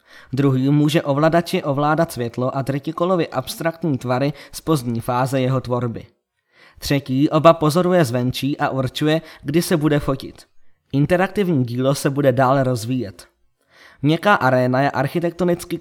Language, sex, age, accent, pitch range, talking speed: Czech, male, 20-39, native, 130-155 Hz, 130 wpm